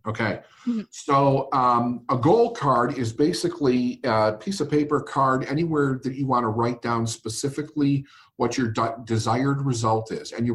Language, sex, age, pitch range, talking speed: English, male, 50-69, 110-140 Hz, 160 wpm